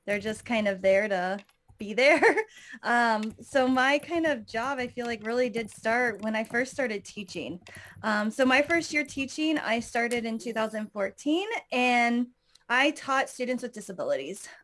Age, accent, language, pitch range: 20-39, American, English, 215-270 Hz